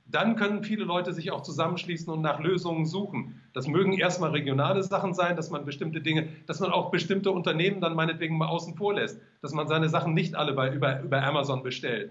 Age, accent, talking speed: 40-59, German, 215 wpm